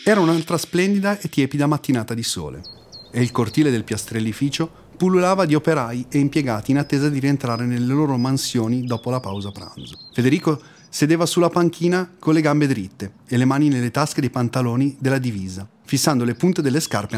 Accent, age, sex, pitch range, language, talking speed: native, 30-49, male, 115-155 Hz, Italian, 180 wpm